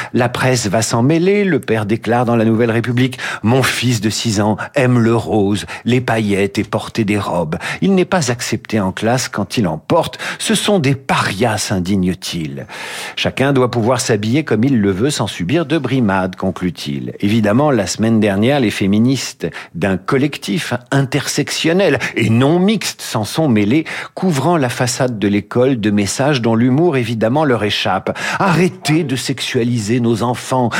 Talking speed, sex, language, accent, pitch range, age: 170 wpm, male, French, French, 105-140 Hz, 50-69